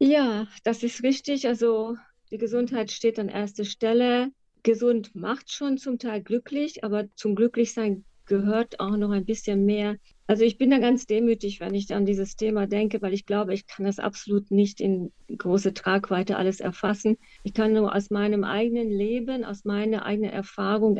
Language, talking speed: German, 175 wpm